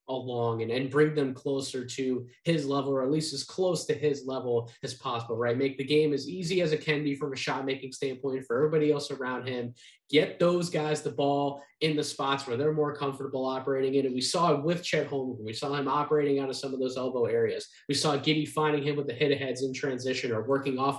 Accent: American